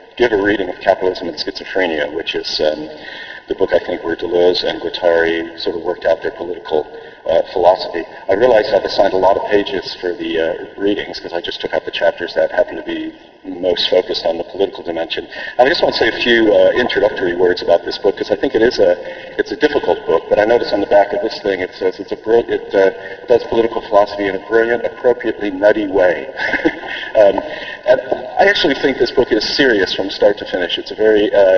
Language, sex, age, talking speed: English, male, 40-59, 225 wpm